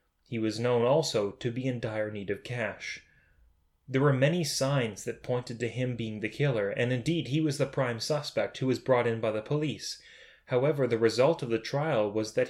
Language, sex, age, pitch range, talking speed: English, male, 10-29, 110-135 Hz, 210 wpm